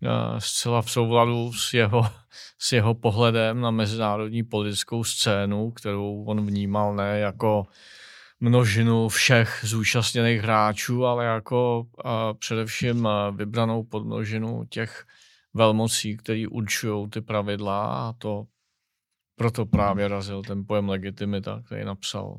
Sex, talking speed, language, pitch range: male, 115 wpm, Czech, 105-120 Hz